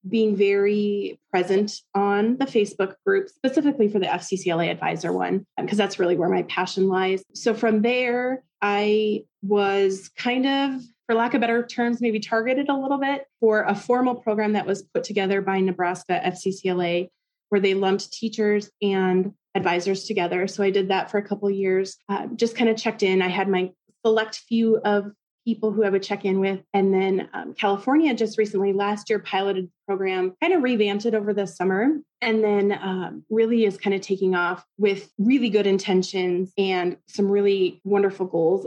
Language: English